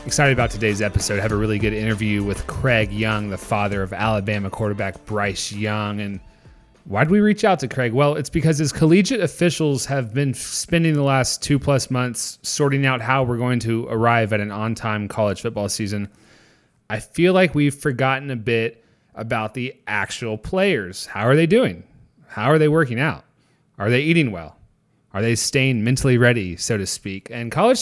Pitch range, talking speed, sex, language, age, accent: 105-140 Hz, 190 wpm, male, English, 30-49, American